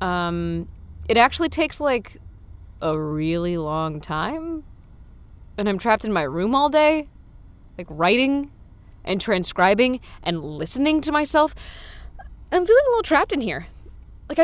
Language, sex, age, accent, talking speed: English, female, 20-39, American, 135 wpm